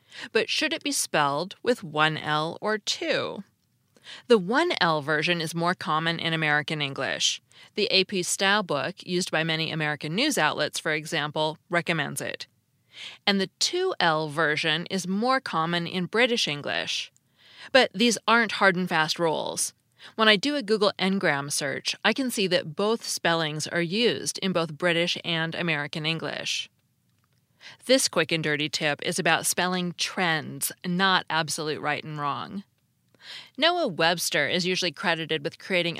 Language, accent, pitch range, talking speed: English, American, 160-200 Hz, 150 wpm